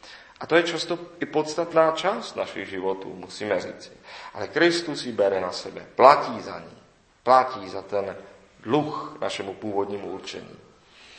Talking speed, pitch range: 145 wpm, 120-165 Hz